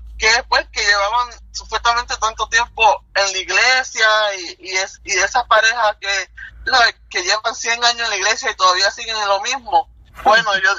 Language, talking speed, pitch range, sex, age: Spanish, 185 wpm, 180-245 Hz, male, 20-39